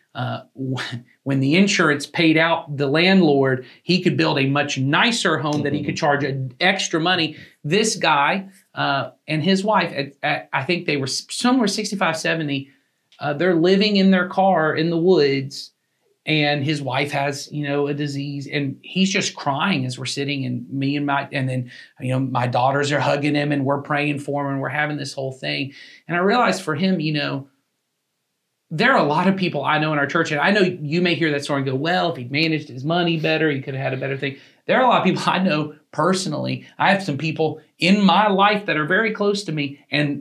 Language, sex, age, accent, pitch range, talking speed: English, male, 40-59, American, 140-180 Hz, 220 wpm